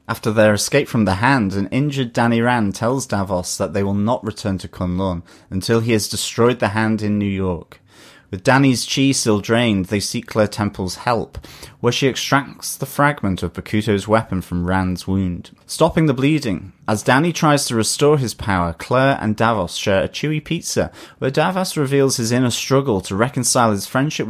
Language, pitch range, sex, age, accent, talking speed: English, 95-130 Hz, male, 30-49, British, 190 wpm